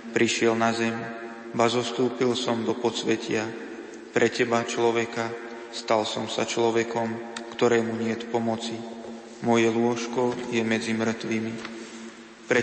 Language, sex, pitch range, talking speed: Slovak, male, 110-115 Hz, 120 wpm